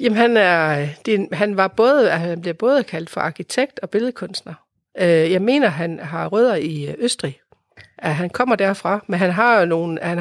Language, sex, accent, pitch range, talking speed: Danish, female, native, 170-220 Hz, 170 wpm